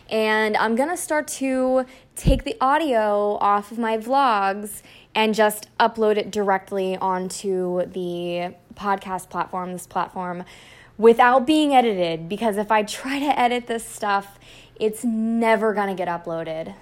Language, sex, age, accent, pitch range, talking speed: English, female, 20-39, American, 185-230 Hz, 145 wpm